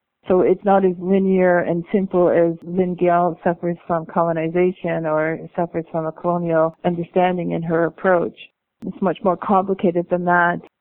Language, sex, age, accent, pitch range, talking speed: English, female, 50-69, American, 175-195 Hz, 155 wpm